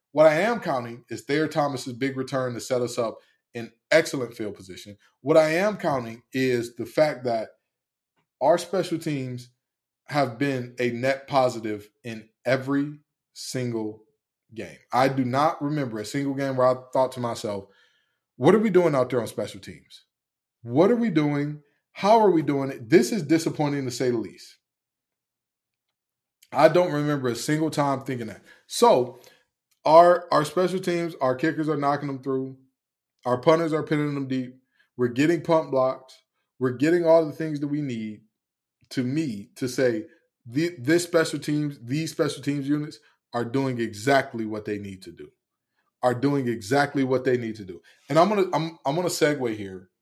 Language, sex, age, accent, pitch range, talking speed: English, male, 20-39, American, 125-155 Hz, 175 wpm